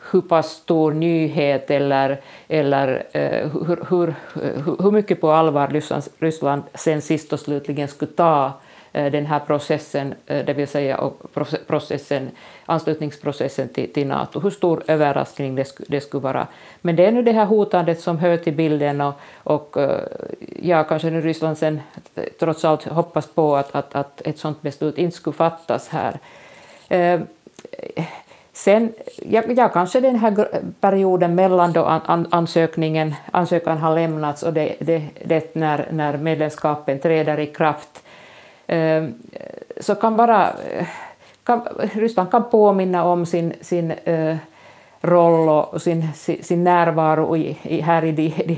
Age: 50-69